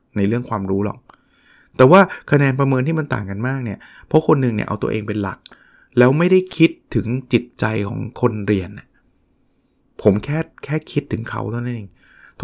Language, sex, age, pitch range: Thai, male, 20-39, 120-160 Hz